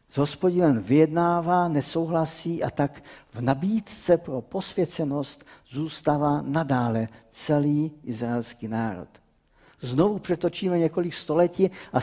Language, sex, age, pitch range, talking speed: Czech, male, 50-69, 130-165 Hz, 95 wpm